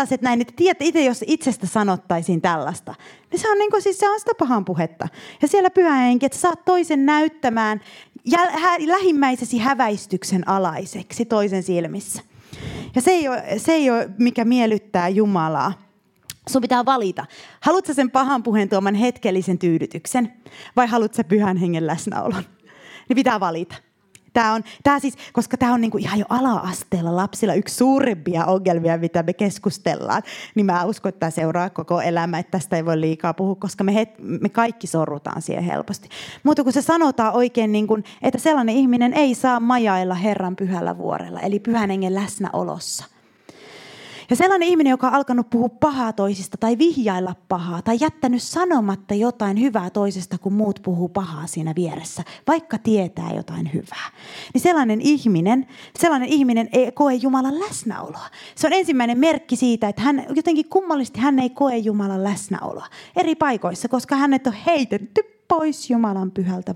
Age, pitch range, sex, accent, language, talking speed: 30-49, 190-275 Hz, female, native, Finnish, 160 wpm